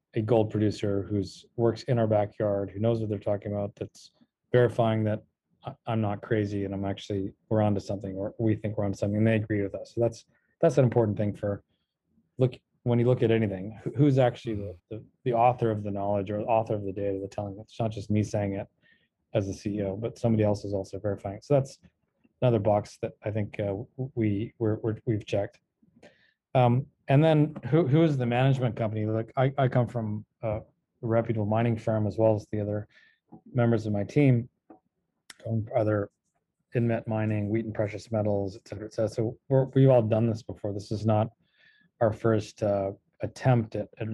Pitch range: 105-120 Hz